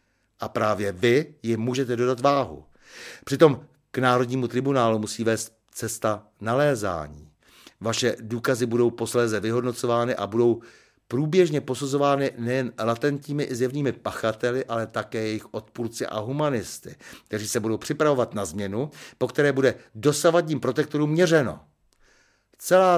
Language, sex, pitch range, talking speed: Czech, male, 115-145 Hz, 125 wpm